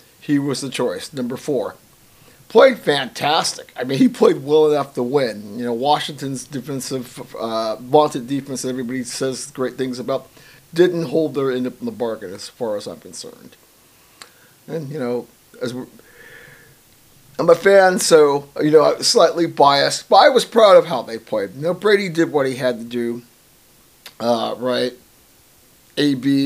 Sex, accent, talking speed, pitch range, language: male, American, 175 wpm, 130-165 Hz, English